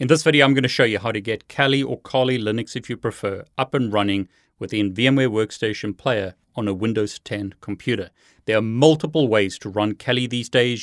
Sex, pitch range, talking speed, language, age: male, 100-125 Hz, 210 wpm, English, 30-49